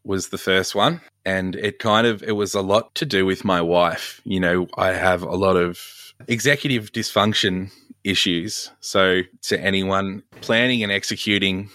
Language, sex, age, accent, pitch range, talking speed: English, male, 20-39, Australian, 95-105 Hz, 170 wpm